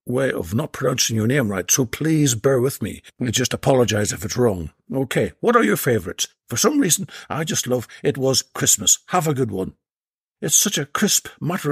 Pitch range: 115-150 Hz